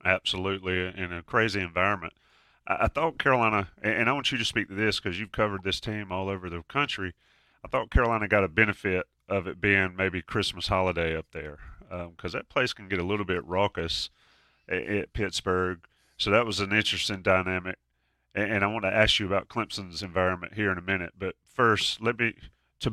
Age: 30-49